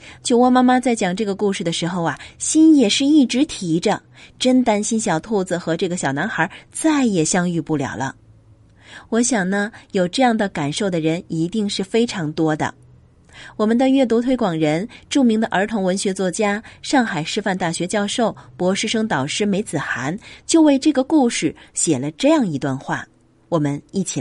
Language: Chinese